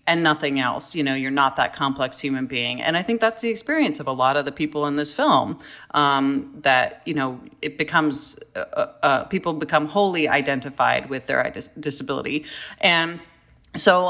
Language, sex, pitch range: English, female, 145-195 Hz